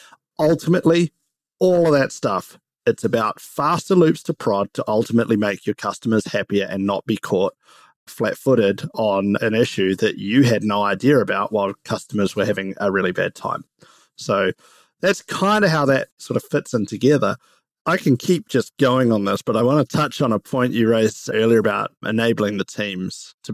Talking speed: 185 wpm